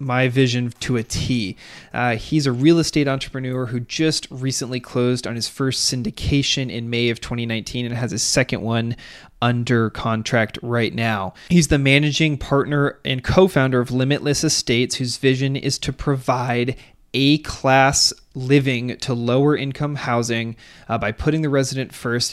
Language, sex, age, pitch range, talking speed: English, male, 20-39, 115-135 Hz, 160 wpm